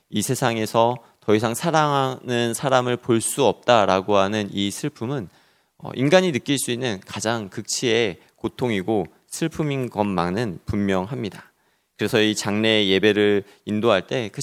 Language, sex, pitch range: Korean, male, 100-130 Hz